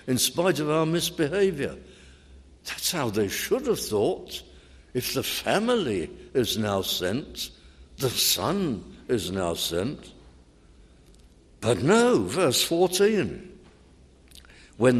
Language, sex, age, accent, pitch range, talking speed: English, male, 60-79, British, 100-140 Hz, 110 wpm